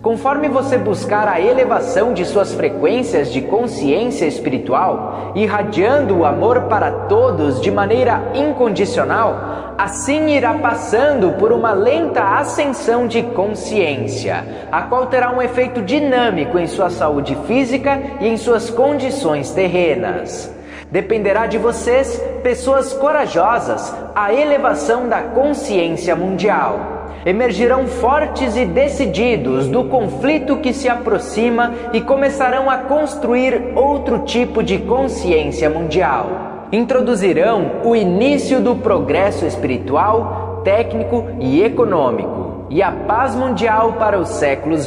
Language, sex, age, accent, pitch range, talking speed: English, male, 20-39, Brazilian, 215-275 Hz, 115 wpm